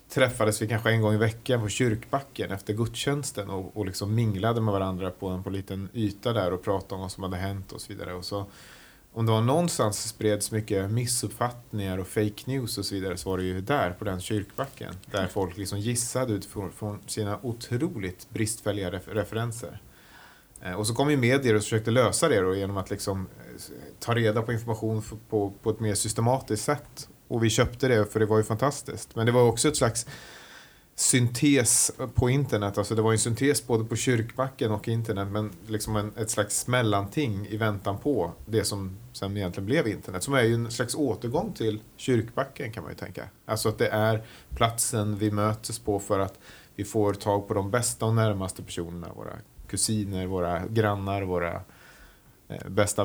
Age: 30-49